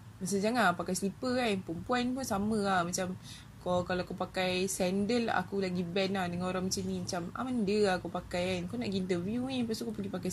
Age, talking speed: 20-39, 240 wpm